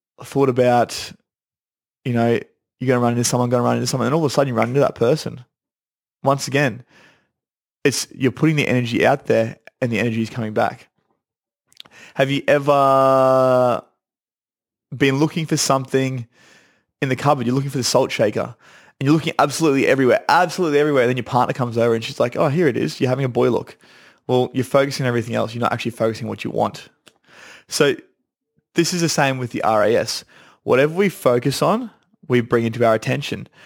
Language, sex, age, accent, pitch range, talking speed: English, male, 20-39, Australian, 120-145 Hz, 195 wpm